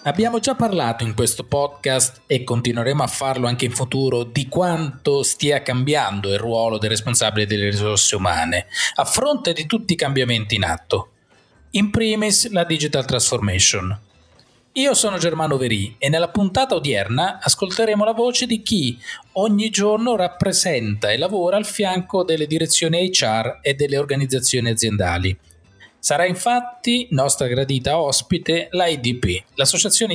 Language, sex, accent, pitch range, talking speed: Italian, male, native, 120-185 Hz, 145 wpm